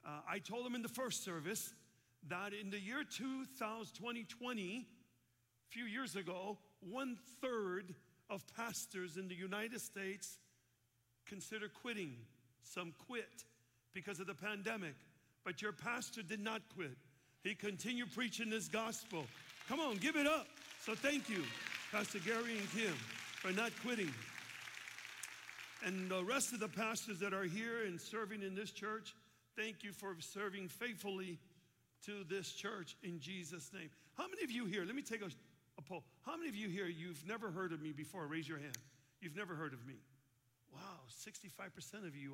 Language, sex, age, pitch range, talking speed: English, male, 50-69, 160-220 Hz, 165 wpm